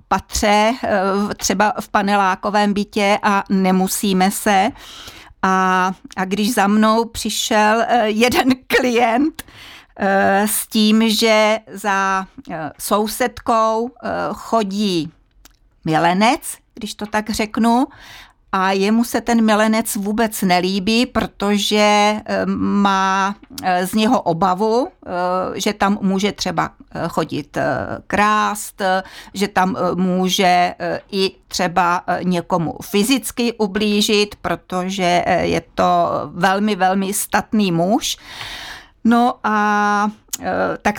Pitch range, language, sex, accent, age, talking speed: 195-230 Hz, Czech, female, native, 40-59, 90 wpm